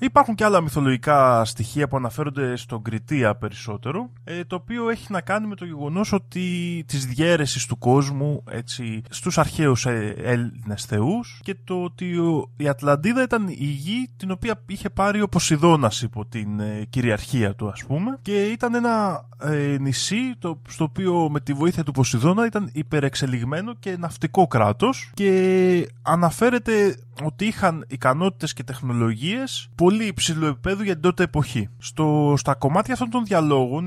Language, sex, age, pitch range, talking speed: Greek, male, 20-39, 125-185 Hz, 145 wpm